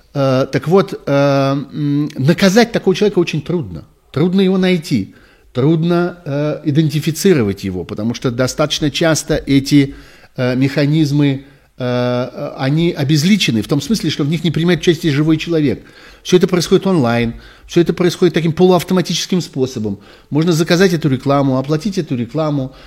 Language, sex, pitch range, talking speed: Russian, male, 125-170 Hz, 130 wpm